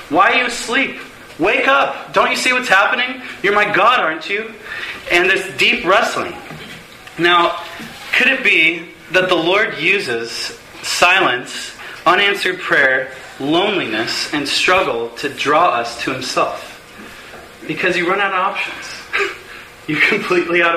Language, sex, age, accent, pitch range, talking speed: English, male, 30-49, American, 130-185 Hz, 140 wpm